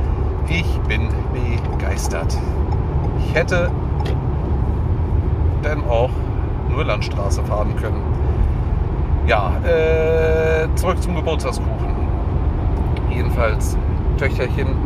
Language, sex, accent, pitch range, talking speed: German, male, German, 75-105 Hz, 75 wpm